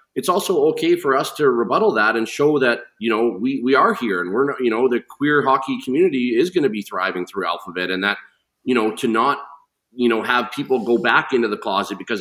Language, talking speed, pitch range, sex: English, 240 wpm, 100-135 Hz, male